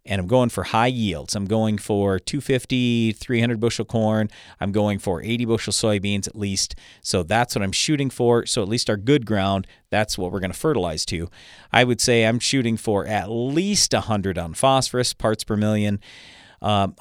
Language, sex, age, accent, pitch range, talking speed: English, male, 40-59, American, 100-120 Hz, 195 wpm